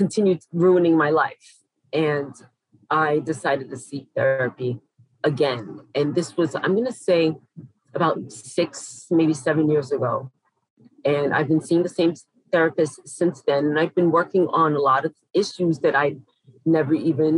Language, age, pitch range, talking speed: English, 40-59, 145-180 Hz, 160 wpm